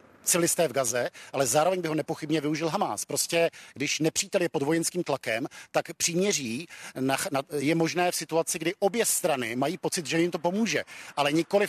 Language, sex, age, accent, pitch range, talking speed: Czech, male, 50-69, native, 150-175 Hz, 175 wpm